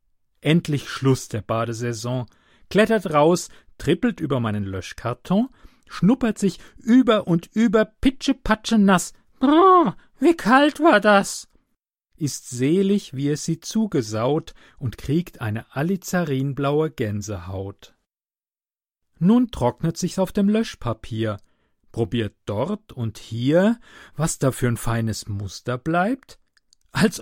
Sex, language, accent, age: male, German, German, 40-59